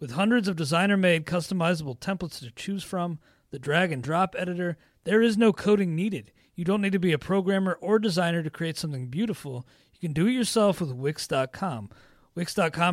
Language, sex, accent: English, male, American